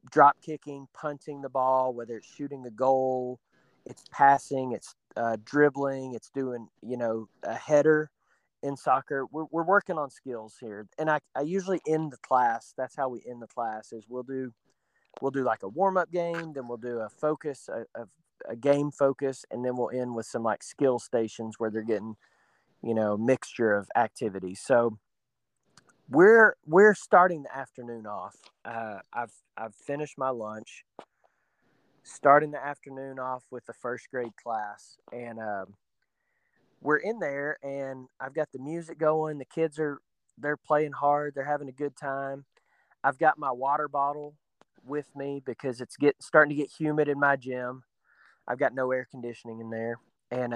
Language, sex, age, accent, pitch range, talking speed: English, male, 30-49, American, 120-150 Hz, 175 wpm